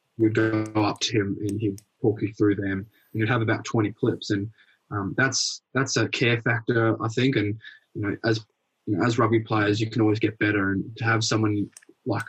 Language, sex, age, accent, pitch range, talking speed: English, male, 20-39, Australian, 105-110 Hz, 220 wpm